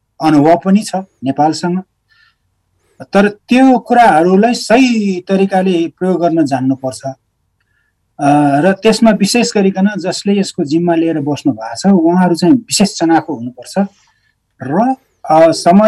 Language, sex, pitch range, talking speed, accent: English, male, 135-180 Hz, 120 wpm, Indian